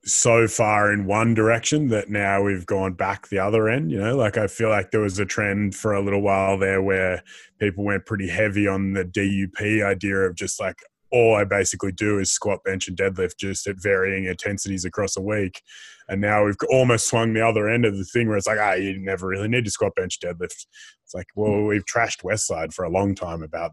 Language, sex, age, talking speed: English, male, 20-39, 235 wpm